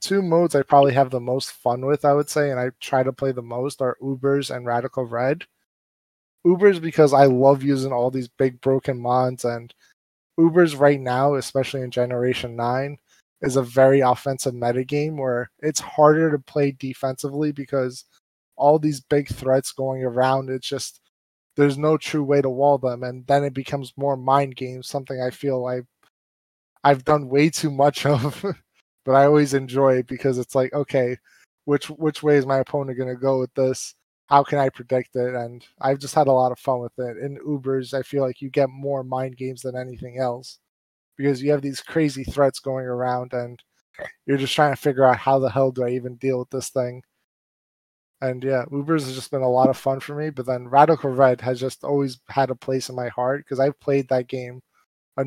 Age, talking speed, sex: 20-39, 205 wpm, male